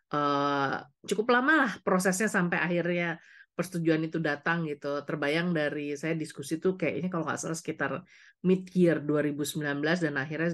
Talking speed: 140 wpm